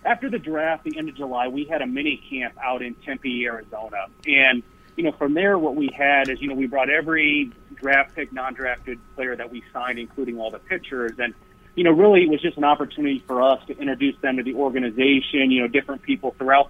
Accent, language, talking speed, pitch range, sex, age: American, English, 225 wpm, 130-160 Hz, male, 30-49